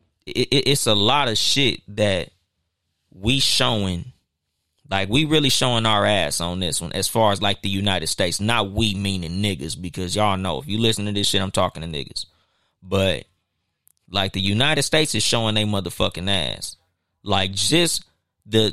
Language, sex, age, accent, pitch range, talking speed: English, male, 20-39, American, 90-115 Hz, 175 wpm